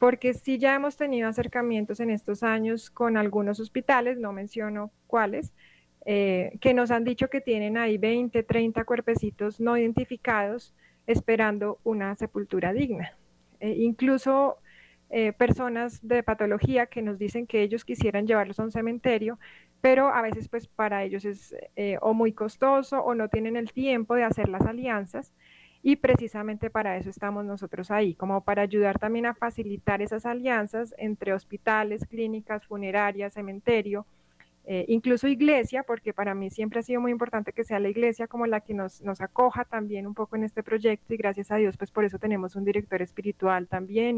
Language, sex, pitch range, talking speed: Spanish, female, 200-235 Hz, 175 wpm